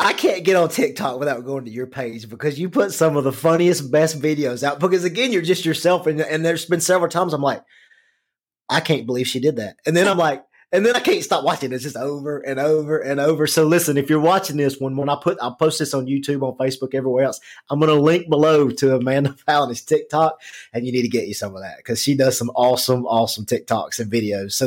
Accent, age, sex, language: American, 30-49, male, English